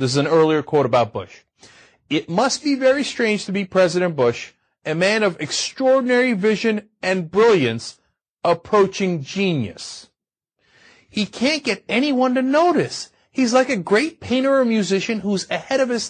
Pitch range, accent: 195-300 Hz, American